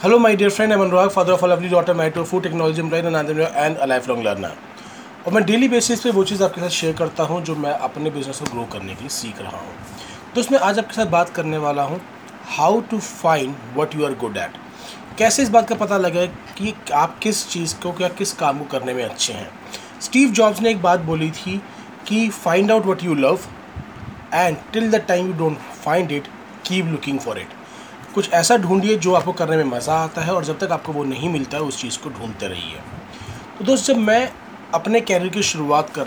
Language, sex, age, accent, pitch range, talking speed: Hindi, male, 30-49, native, 145-200 Hz, 220 wpm